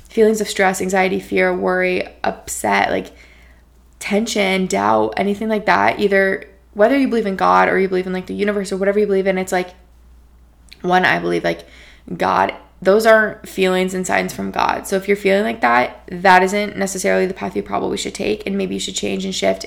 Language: English